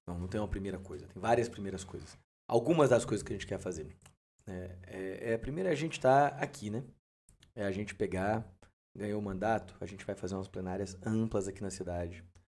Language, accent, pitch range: Portuguese, Brazilian, 100-125 Hz